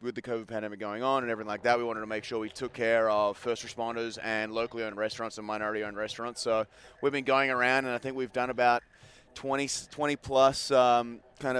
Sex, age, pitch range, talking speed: male, 30-49, 115-125 Hz, 235 wpm